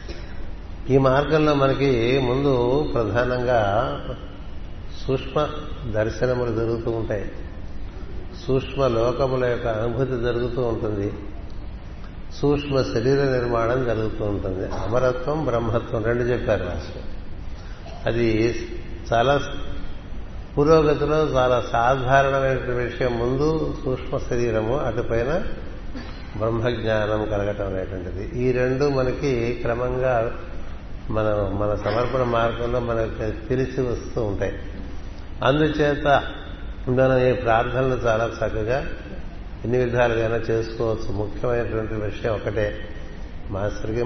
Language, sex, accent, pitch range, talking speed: Telugu, male, native, 95-125 Hz, 85 wpm